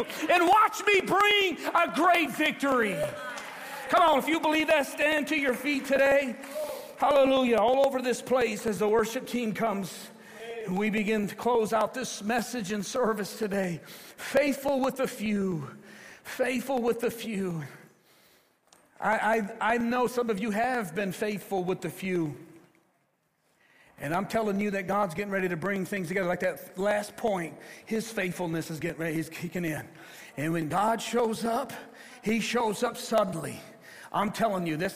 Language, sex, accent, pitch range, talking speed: English, male, American, 185-245 Hz, 165 wpm